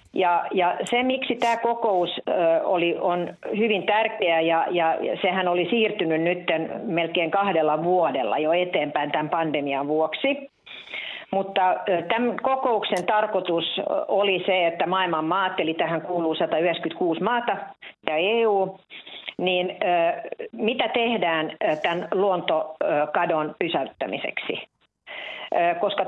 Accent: native